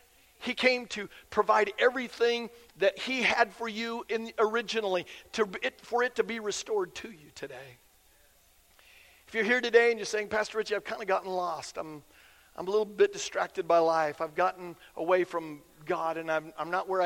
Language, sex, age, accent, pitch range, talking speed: English, male, 50-69, American, 170-225 Hz, 190 wpm